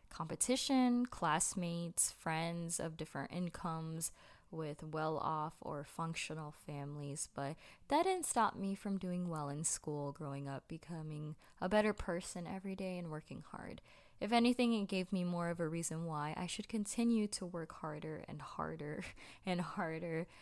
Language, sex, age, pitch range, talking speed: English, female, 20-39, 155-185 Hz, 155 wpm